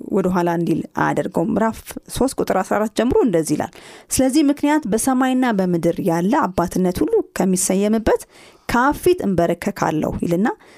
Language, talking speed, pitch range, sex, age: Amharic, 100 wpm, 180-265 Hz, female, 30-49